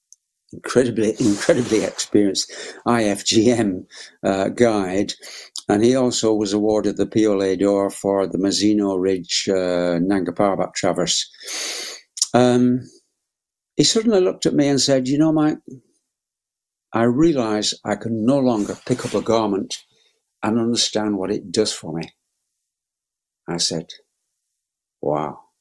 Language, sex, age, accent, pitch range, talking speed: English, male, 60-79, British, 100-130 Hz, 120 wpm